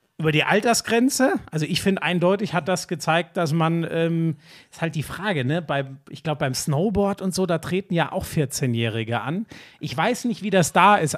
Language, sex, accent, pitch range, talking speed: German, male, German, 155-200 Hz, 205 wpm